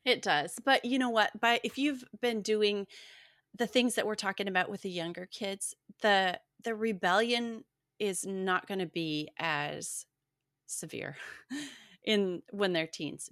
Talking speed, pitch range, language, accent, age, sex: 160 wpm, 165-220 Hz, English, American, 30-49, female